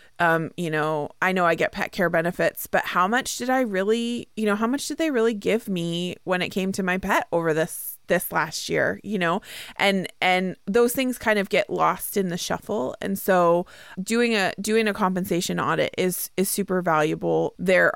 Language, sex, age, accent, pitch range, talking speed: English, female, 20-39, American, 165-200 Hz, 205 wpm